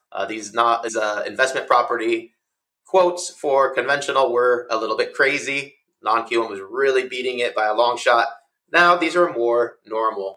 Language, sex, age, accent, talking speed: English, male, 30-49, American, 170 wpm